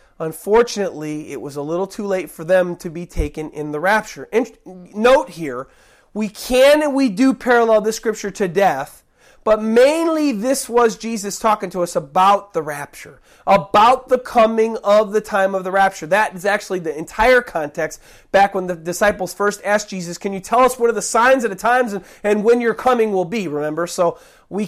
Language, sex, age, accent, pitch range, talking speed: English, male, 30-49, American, 170-225 Hz, 195 wpm